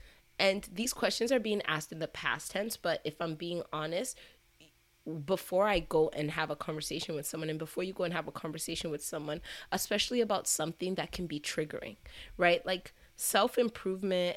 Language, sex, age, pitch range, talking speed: English, female, 20-39, 160-205 Hz, 185 wpm